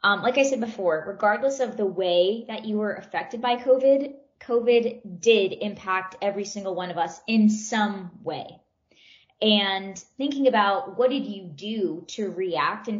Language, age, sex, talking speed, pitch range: English, 20-39, female, 165 wpm, 190-245 Hz